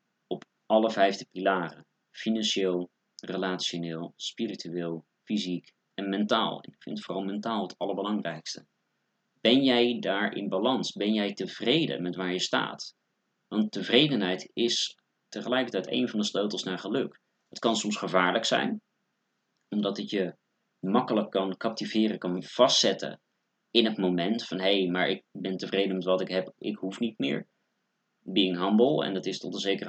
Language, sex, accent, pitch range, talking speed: Dutch, male, Dutch, 90-110 Hz, 150 wpm